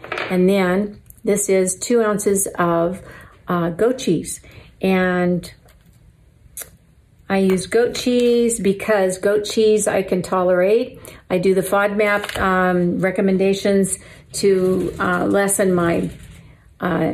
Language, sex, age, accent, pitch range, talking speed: English, female, 50-69, American, 170-210 Hz, 110 wpm